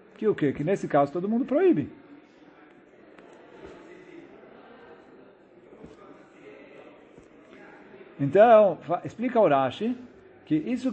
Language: Portuguese